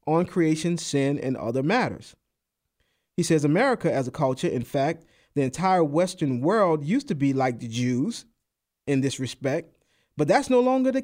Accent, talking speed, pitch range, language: American, 175 wpm, 135-200 Hz, English